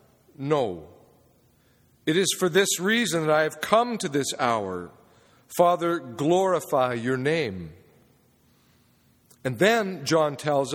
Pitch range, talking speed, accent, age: 145-200 Hz, 115 wpm, American, 50-69